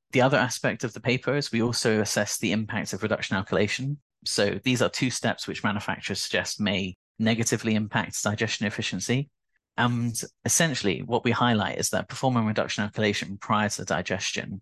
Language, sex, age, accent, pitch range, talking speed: English, male, 30-49, British, 105-120 Hz, 170 wpm